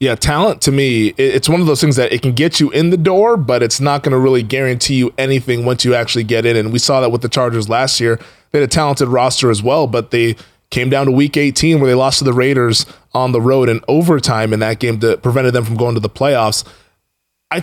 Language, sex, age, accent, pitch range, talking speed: English, male, 20-39, American, 120-155 Hz, 260 wpm